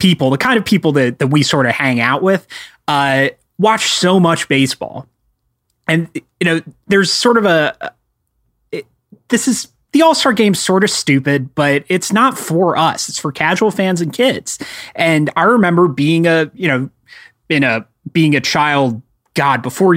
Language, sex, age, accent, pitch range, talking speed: English, male, 30-49, American, 135-185 Hz, 175 wpm